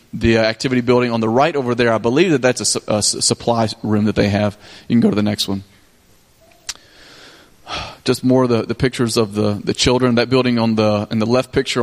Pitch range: 110-130 Hz